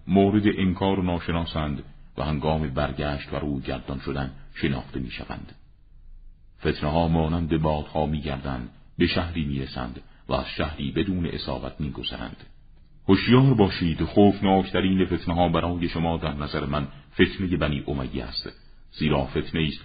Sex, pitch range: male, 70-80 Hz